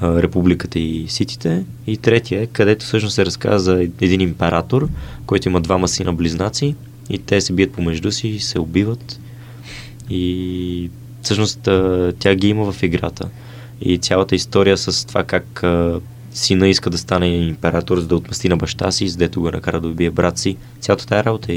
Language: Bulgarian